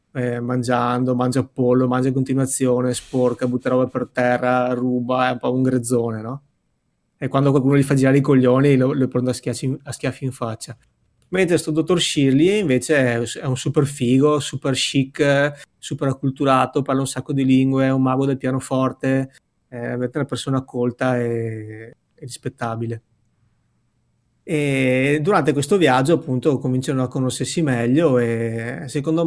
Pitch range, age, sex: 125-150 Hz, 20-39, male